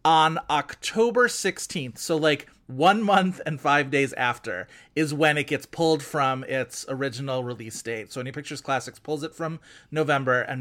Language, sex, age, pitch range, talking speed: English, male, 30-49, 130-165 Hz, 170 wpm